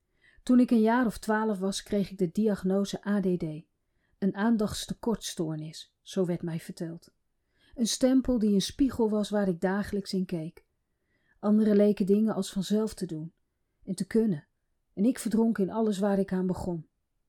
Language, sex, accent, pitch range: Dutch, female, Dutch, 185-215 Hz